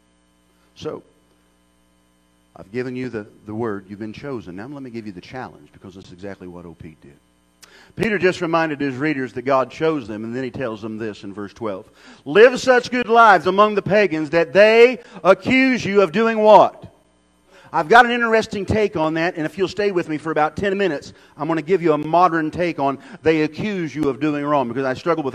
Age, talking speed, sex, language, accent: 40-59, 220 wpm, male, English, American